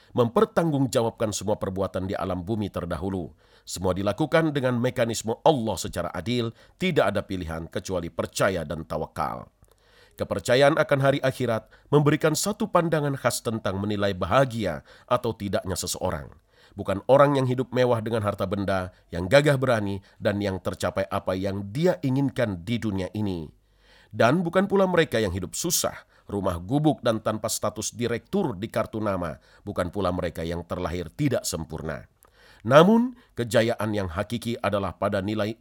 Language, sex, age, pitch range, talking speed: Indonesian, male, 40-59, 95-130 Hz, 145 wpm